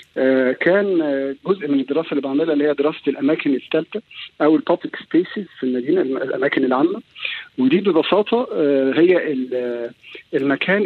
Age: 50-69